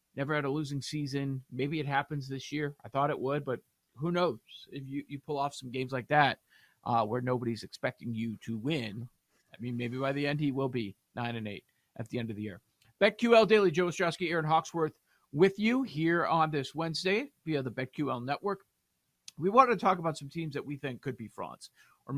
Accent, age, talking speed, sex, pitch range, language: American, 40-59, 215 wpm, male, 130-170 Hz, English